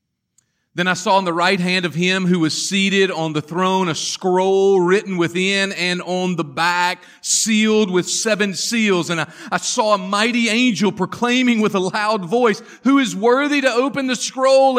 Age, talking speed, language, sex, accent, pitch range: 40-59, 185 wpm, English, male, American, 185-245 Hz